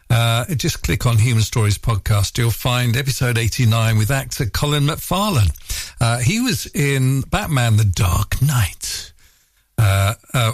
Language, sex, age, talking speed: English, male, 50-69, 135 wpm